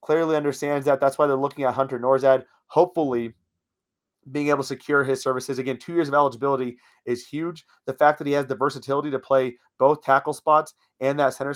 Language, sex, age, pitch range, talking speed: English, male, 30-49, 130-150 Hz, 200 wpm